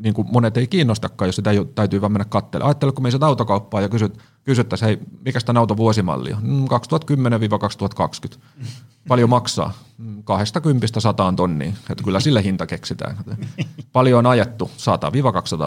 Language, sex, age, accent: Finnish, male, 30-49, native